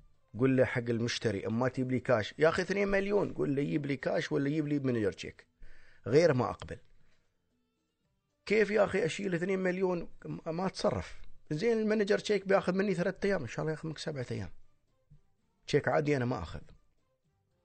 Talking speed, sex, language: 175 wpm, male, Arabic